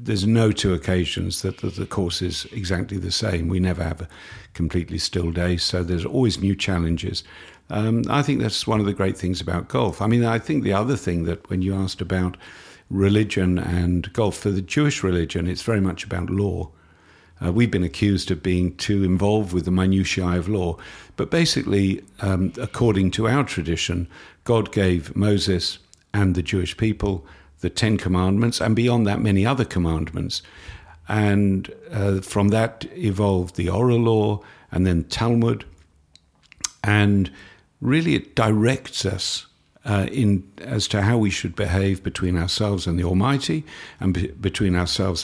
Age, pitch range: 50-69, 90-110 Hz